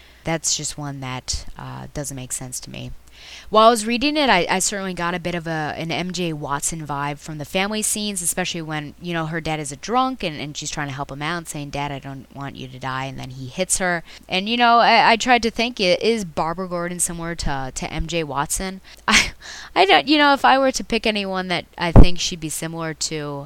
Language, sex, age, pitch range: English, female, 20-39, 140-185 Hz